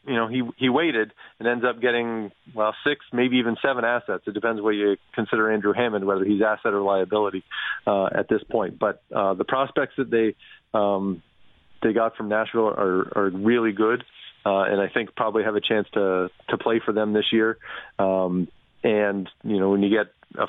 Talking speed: 200 wpm